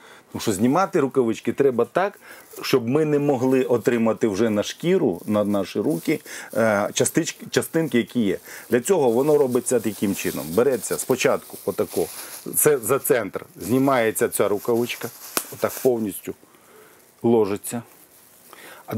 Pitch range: 110-145 Hz